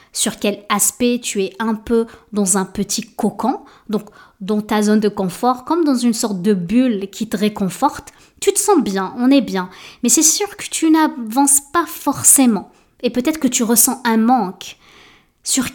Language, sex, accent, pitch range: French, female, French, 205-265 Hz